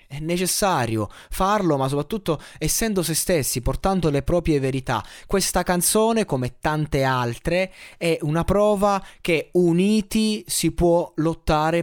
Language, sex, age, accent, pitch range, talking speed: Italian, male, 20-39, native, 130-185 Hz, 125 wpm